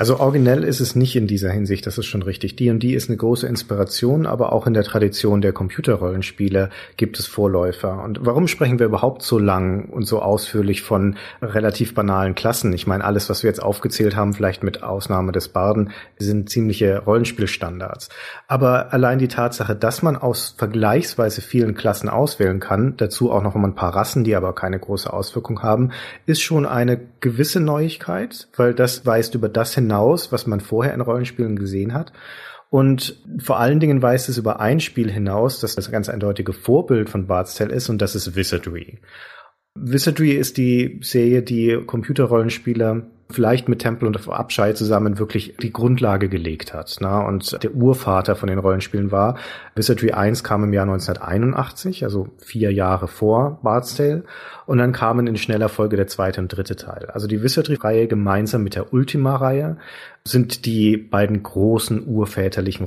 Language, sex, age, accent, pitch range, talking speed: German, male, 40-59, German, 100-125 Hz, 175 wpm